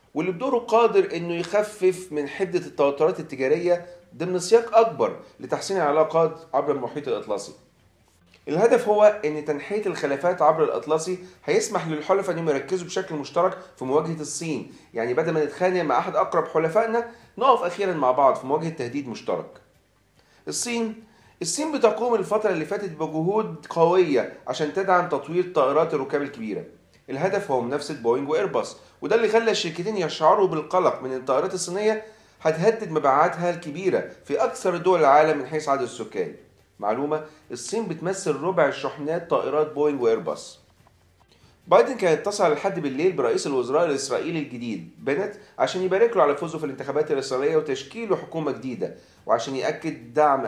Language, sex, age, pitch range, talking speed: Arabic, male, 40-59, 150-210 Hz, 145 wpm